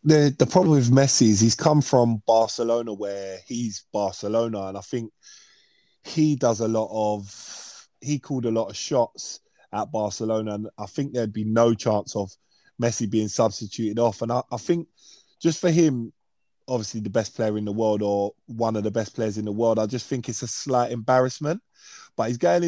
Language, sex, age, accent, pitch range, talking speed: English, male, 20-39, British, 110-135 Hz, 195 wpm